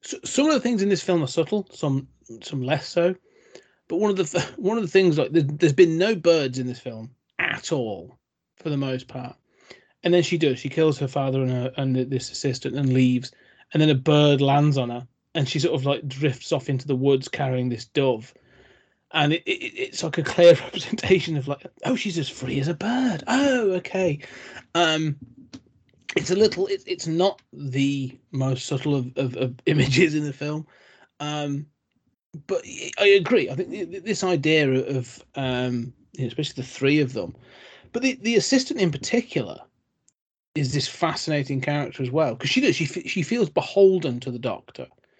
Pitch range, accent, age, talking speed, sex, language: 130-180 Hz, British, 30-49, 190 wpm, male, English